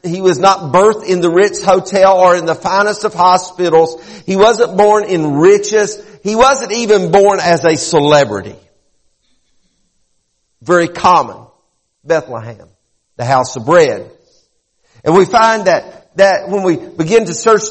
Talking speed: 145 wpm